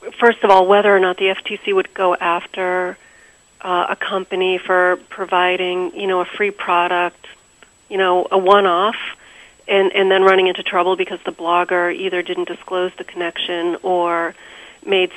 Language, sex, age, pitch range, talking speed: English, female, 40-59, 180-210 Hz, 160 wpm